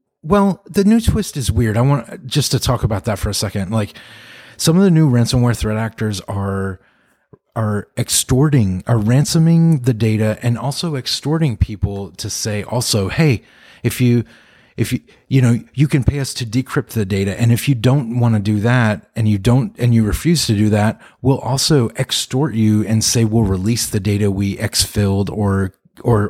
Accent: American